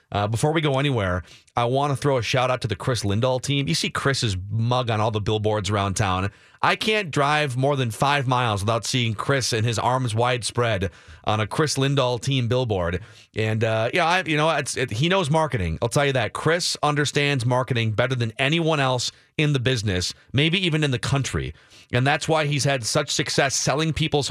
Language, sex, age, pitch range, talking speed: English, male, 30-49, 120-155 Hz, 210 wpm